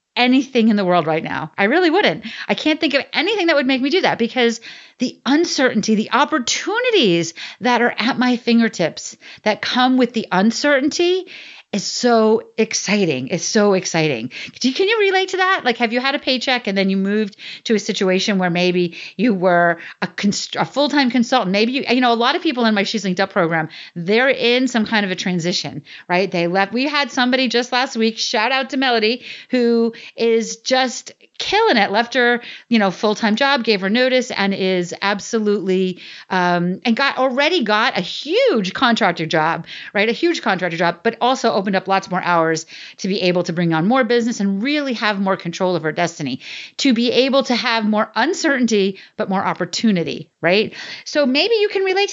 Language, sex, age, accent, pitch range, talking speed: English, female, 40-59, American, 190-260 Hz, 200 wpm